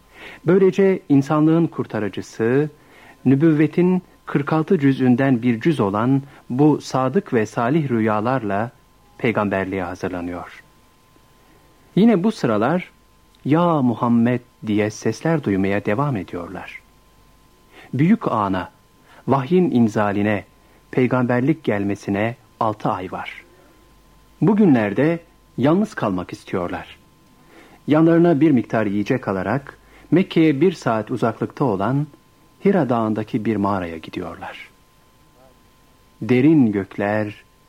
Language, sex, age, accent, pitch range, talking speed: Turkish, male, 60-79, native, 110-155 Hz, 90 wpm